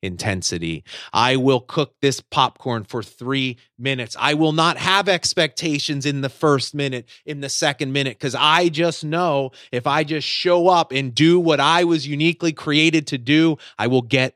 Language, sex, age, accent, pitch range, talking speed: English, male, 30-49, American, 125-205 Hz, 180 wpm